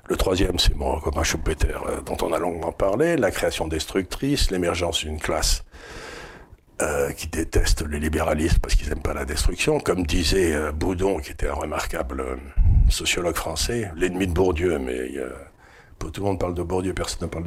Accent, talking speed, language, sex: French, 190 wpm, French, male